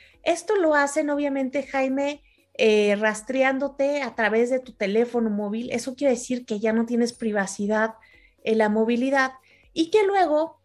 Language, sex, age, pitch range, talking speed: Spanish, female, 30-49, 225-270 Hz, 150 wpm